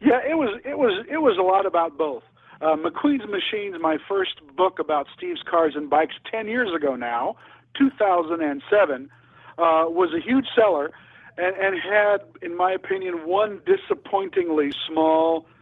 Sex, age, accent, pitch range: male, 50-69, American, 145-210 Hz